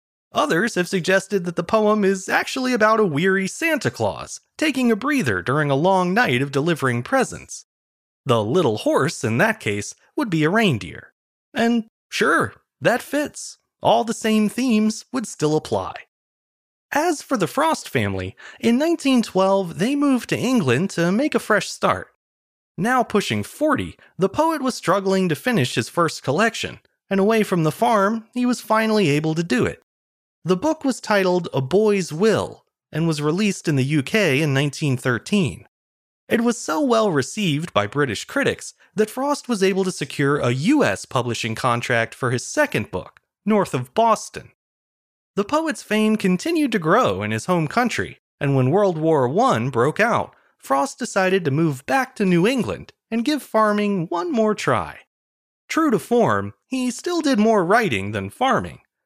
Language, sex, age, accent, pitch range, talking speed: English, male, 30-49, American, 145-235 Hz, 165 wpm